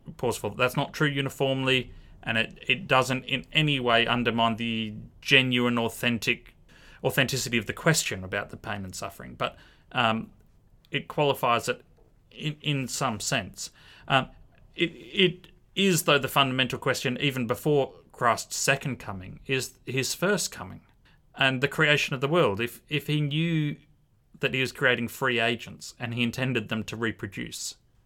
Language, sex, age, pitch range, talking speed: English, male, 30-49, 110-135 Hz, 160 wpm